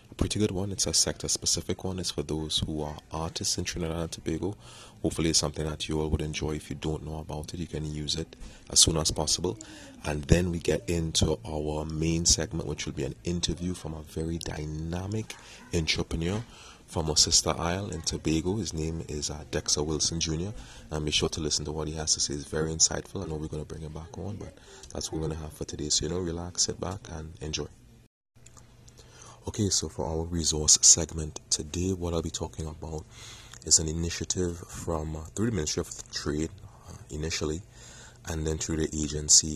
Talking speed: 210 wpm